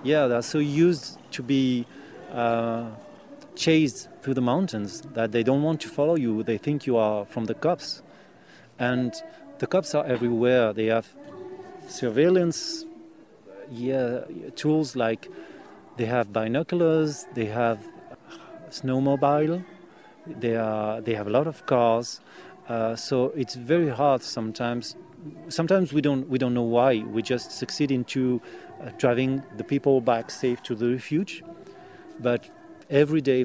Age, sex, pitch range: 30-49, male, 115-150 Hz